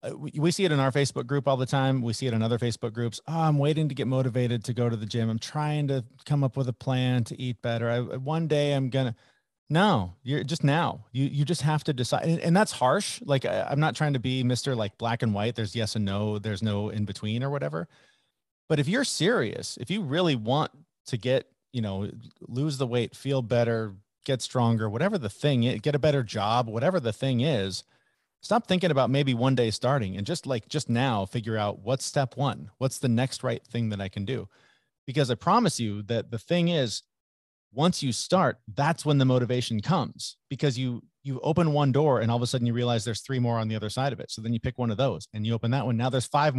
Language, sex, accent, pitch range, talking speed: English, male, American, 115-145 Hz, 240 wpm